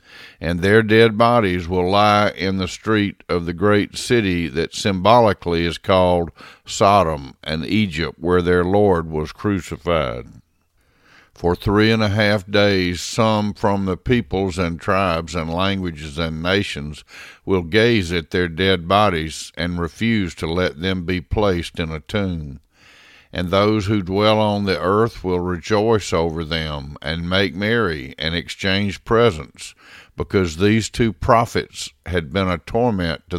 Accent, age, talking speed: American, 50-69, 150 wpm